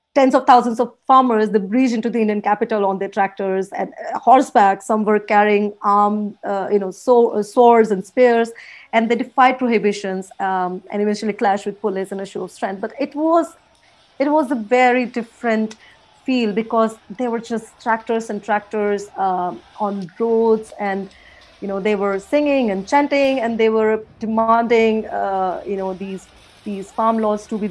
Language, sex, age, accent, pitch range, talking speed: English, female, 30-49, Indian, 200-240 Hz, 180 wpm